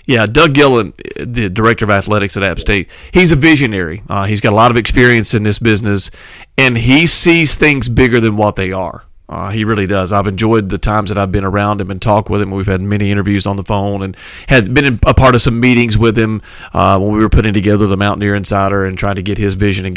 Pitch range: 100-120 Hz